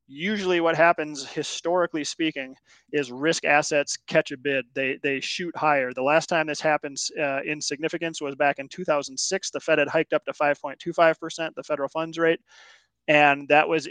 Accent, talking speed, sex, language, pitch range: American, 175 wpm, male, English, 140-165 Hz